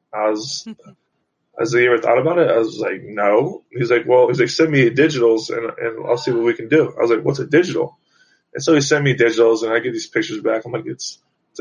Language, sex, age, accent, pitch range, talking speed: English, male, 20-39, American, 125-155 Hz, 265 wpm